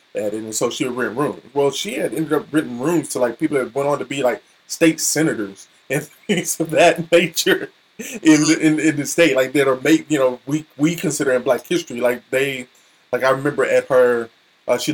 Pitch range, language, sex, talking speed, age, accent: 125-170 Hz, English, male, 235 wpm, 20-39, American